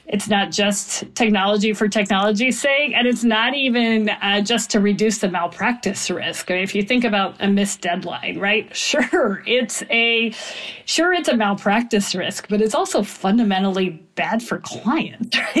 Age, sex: 40-59, female